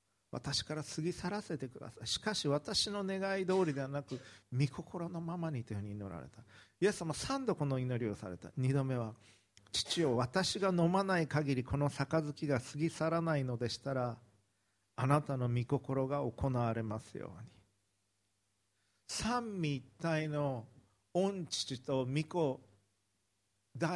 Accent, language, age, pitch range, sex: native, Japanese, 50-69, 105-155 Hz, male